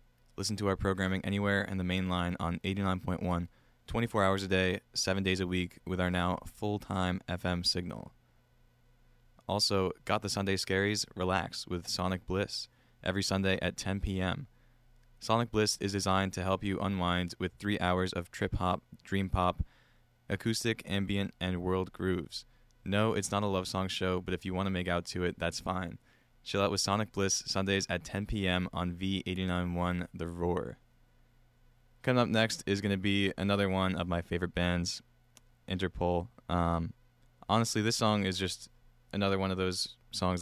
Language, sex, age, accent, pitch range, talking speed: English, male, 20-39, American, 90-100 Hz, 170 wpm